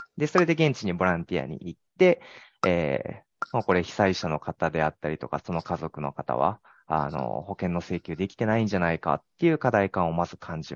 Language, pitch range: Japanese, 85-120 Hz